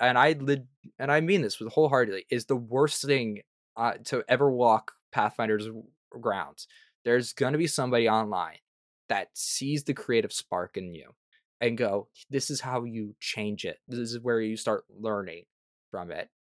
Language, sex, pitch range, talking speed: English, male, 105-125 Hz, 165 wpm